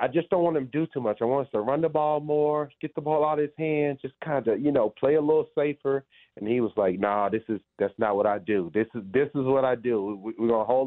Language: English